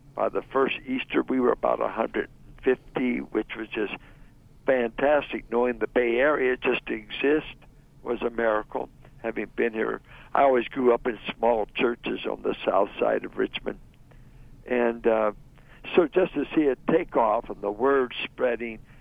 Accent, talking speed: American, 160 wpm